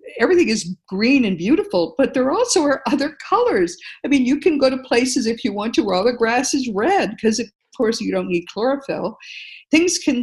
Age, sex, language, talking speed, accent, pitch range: 50-69, female, English, 215 wpm, American, 185-270 Hz